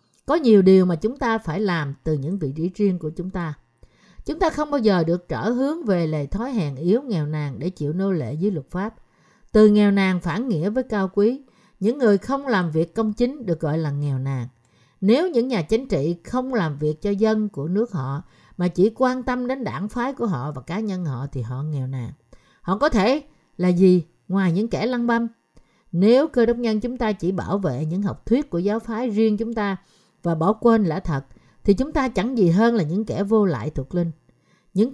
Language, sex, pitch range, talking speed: Vietnamese, female, 160-230 Hz, 230 wpm